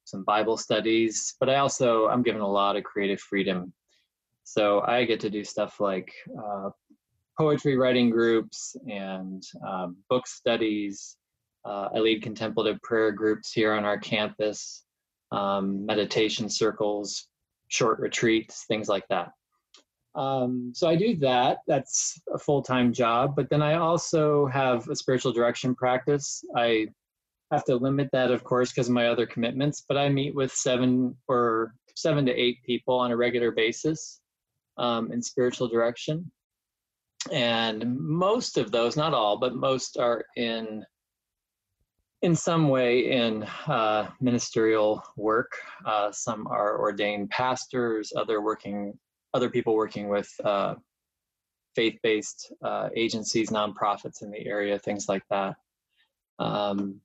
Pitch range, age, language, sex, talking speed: 105-125 Hz, 20-39, English, male, 140 wpm